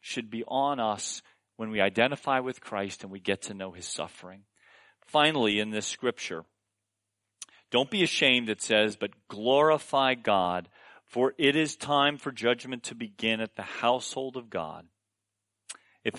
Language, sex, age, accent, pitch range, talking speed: English, male, 40-59, American, 100-125 Hz, 155 wpm